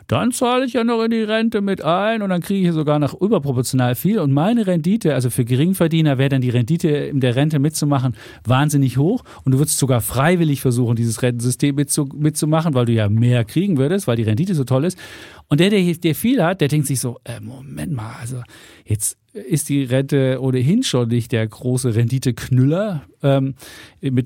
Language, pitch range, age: German, 130-165 Hz, 40-59